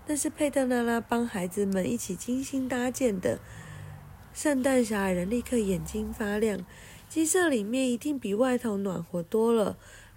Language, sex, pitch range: Chinese, female, 185-275 Hz